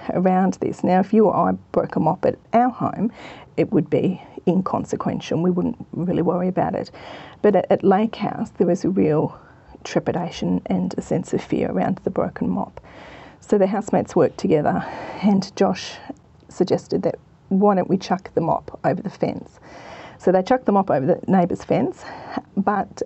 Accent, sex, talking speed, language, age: Australian, female, 180 wpm, English, 40-59